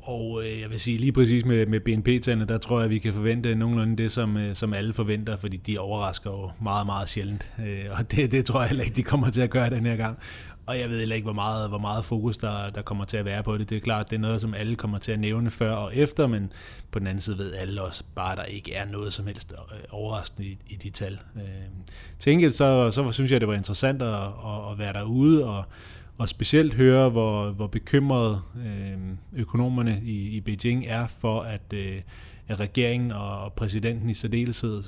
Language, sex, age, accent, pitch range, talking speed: Danish, male, 30-49, native, 100-115 Hz, 220 wpm